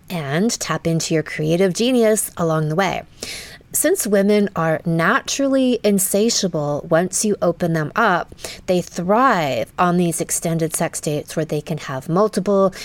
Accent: American